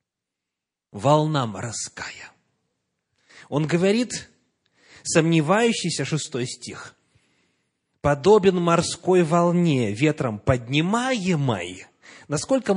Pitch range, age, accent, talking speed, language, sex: 130-180 Hz, 30-49, native, 60 wpm, Russian, male